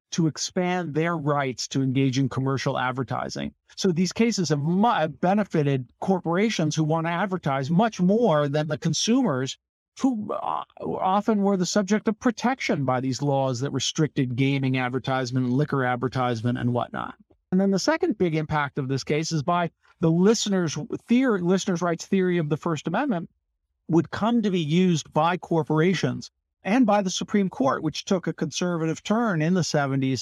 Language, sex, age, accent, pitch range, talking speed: English, male, 50-69, American, 145-200 Hz, 165 wpm